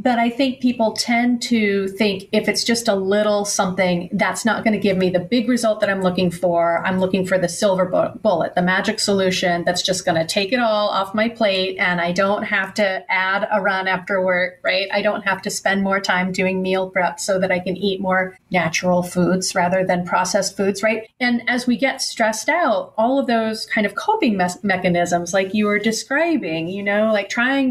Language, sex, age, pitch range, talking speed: English, female, 30-49, 185-220 Hz, 215 wpm